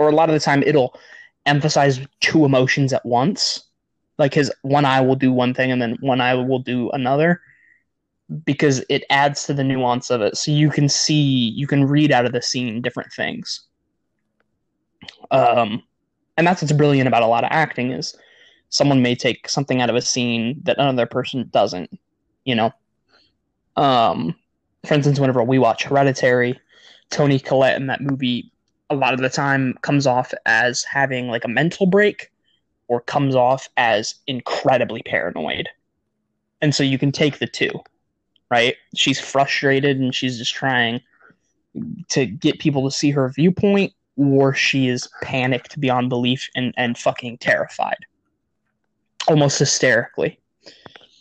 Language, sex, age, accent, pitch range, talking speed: English, male, 20-39, American, 125-145 Hz, 160 wpm